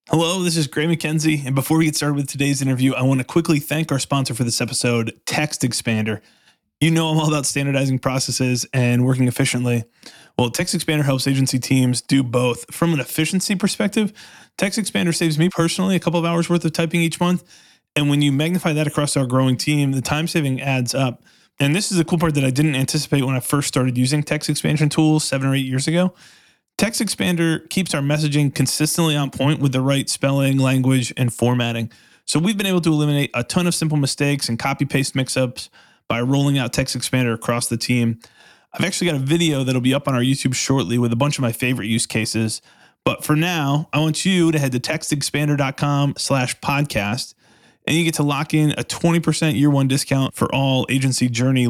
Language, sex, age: English, male, 20-39